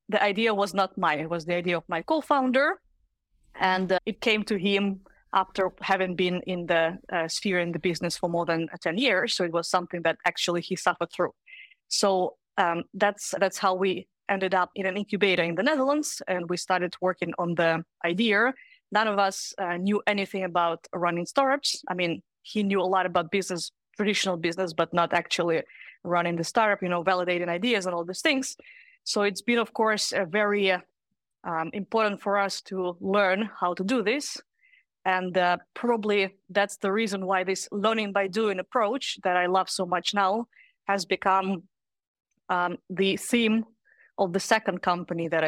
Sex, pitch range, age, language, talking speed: female, 180-210 Hz, 20-39, English, 185 wpm